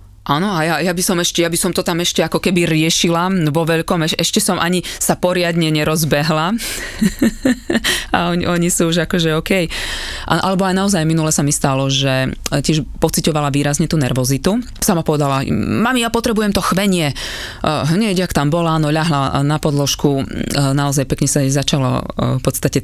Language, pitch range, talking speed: Slovak, 130-165 Hz, 180 wpm